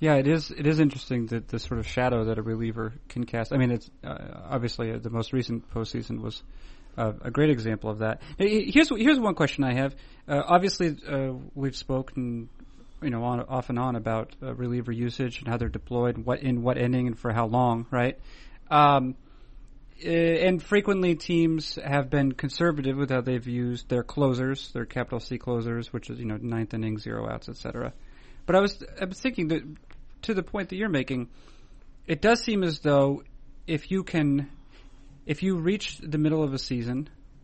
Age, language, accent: 30-49, English, American